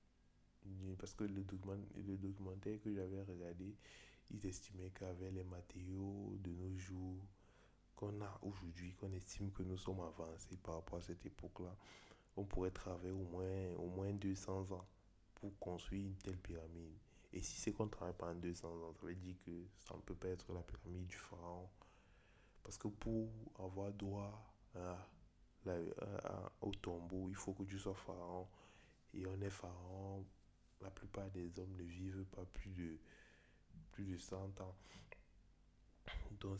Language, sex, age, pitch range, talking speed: French, male, 20-39, 90-100 Hz, 165 wpm